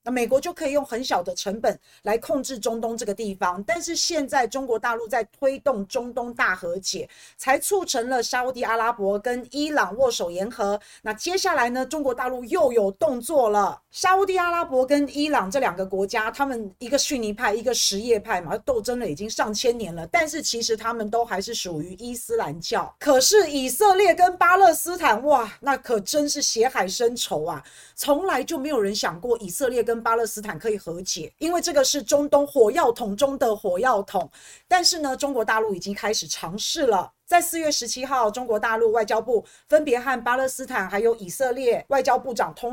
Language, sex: Chinese, female